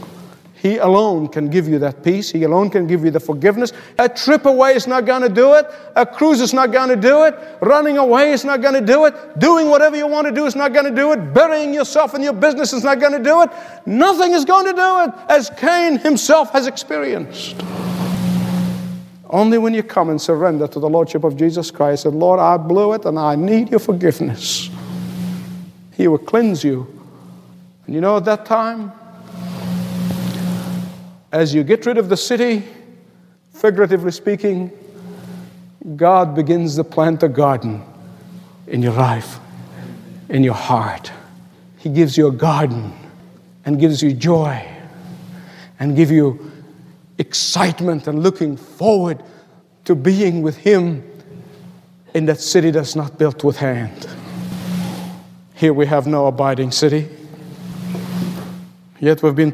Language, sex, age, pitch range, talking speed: English, male, 50-69, 155-225 Hz, 165 wpm